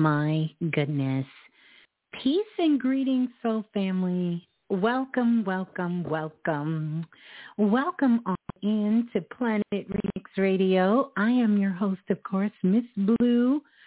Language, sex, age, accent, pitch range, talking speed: English, female, 40-59, American, 155-240 Hz, 110 wpm